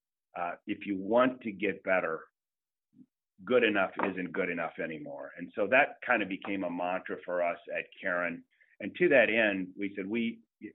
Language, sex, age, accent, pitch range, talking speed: English, male, 40-59, American, 90-105 Hz, 175 wpm